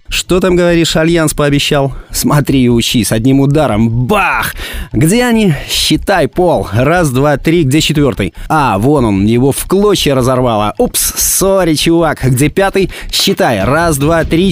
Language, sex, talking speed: Russian, male, 150 wpm